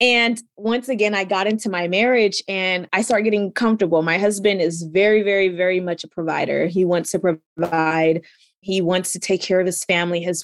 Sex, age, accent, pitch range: female, 20-39, American, 175-235 Hz